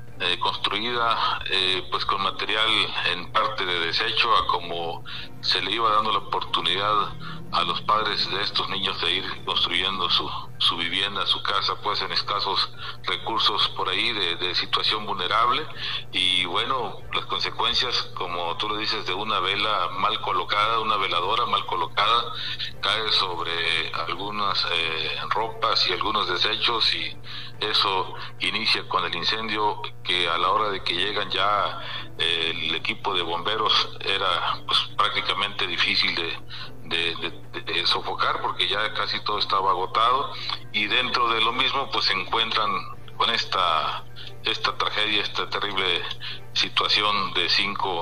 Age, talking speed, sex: 50-69, 150 wpm, male